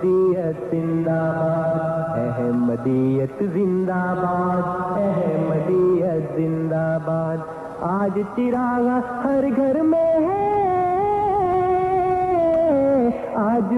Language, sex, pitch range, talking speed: Urdu, male, 165-275 Hz, 65 wpm